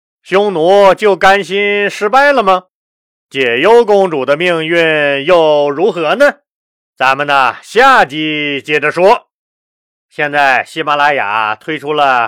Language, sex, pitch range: Chinese, male, 120-165 Hz